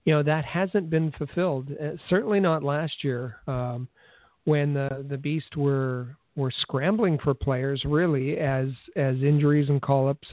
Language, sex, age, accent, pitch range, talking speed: English, male, 50-69, American, 135-165 Hz, 155 wpm